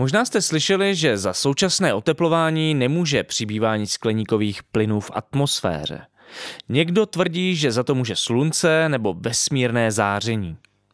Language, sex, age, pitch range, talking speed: Czech, male, 20-39, 105-150 Hz, 125 wpm